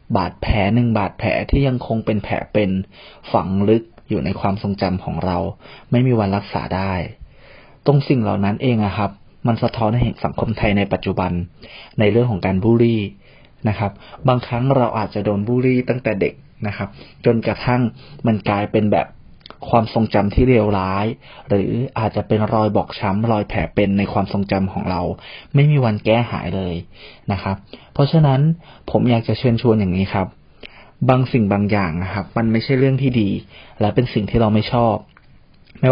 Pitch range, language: 100-120 Hz, Thai